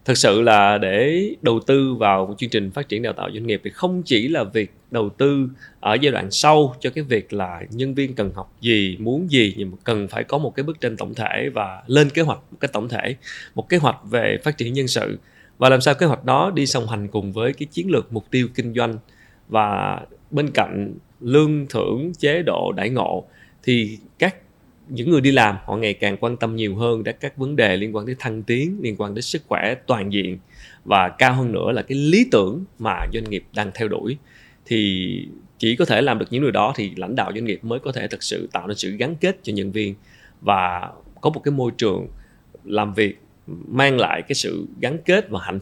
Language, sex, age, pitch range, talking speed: Vietnamese, male, 20-39, 105-135 Hz, 235 wpm